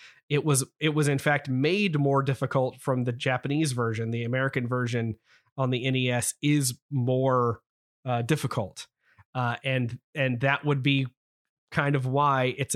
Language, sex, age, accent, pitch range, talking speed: English, male, 30-49, American, 125-155 Hz, 155 wpm